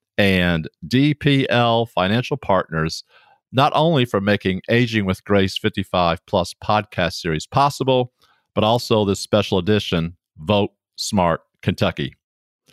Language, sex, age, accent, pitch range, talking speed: English, male, 50-69, American, 95-125 Hz, 115 wpm